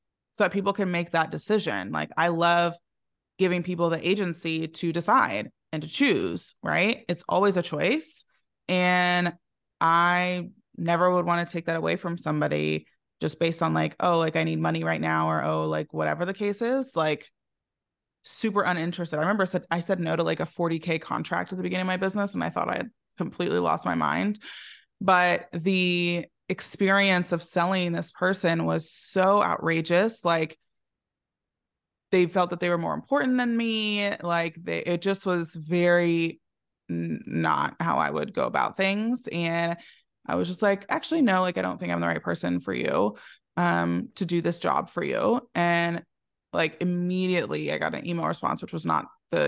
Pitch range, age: 165-190 Hz, 20-39